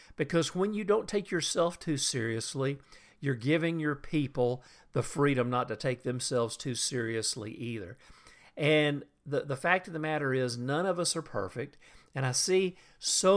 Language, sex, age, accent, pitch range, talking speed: English, male, 50-69, American, 125-170 Hz, 170 wpm